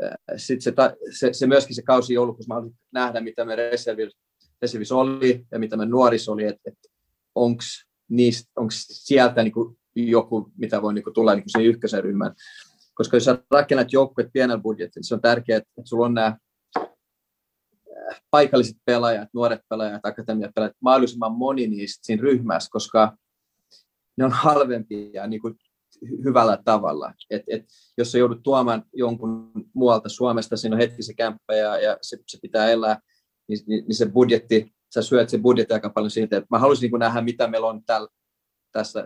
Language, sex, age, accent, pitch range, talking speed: Finnish, male, 30-49, native, 110-125 Hz, 165 wpm